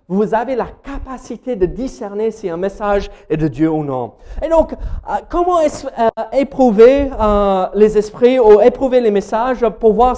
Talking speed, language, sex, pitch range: 165 wpm, French, male, 170-250 Hz